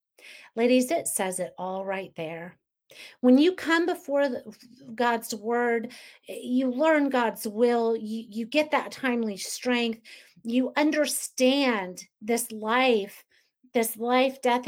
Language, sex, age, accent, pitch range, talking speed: English, female, 40-59, American, 210-255 Hz, 125 wpm